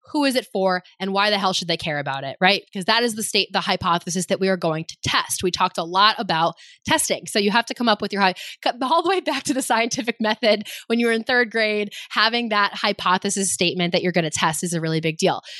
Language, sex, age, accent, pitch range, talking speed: English, female, 20-39, American, 180-225 Hz, 265 wpm